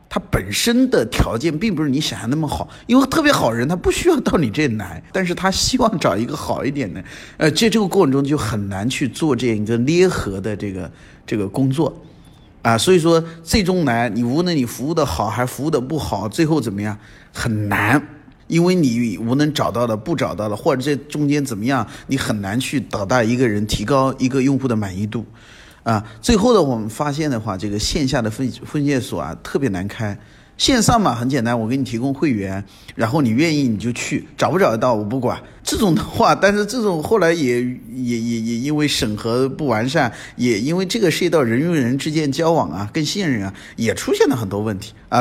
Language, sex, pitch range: Chinese, male, 110-160 Hz